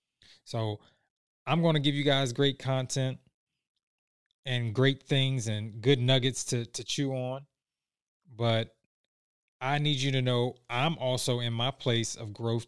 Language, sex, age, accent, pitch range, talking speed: English, male, 20-39, American, 110-135 Hz, 150 wpm